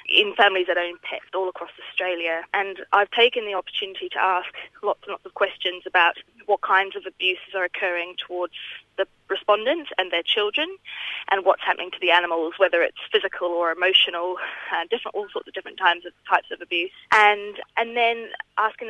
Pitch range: 180-230 Hz